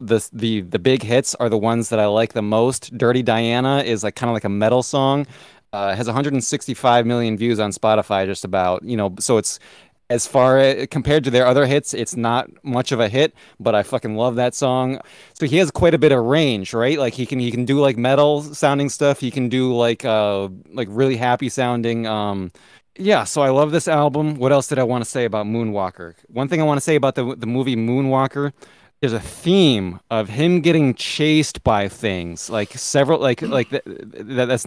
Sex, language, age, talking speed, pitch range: male, English, 20-39, 220 wpm, 110-135 Hz